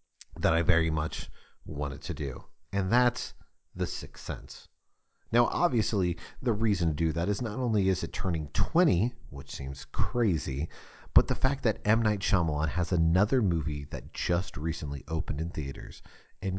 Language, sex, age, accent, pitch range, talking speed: English, male, 40-59, American, 80-110 Hz, 165 wpm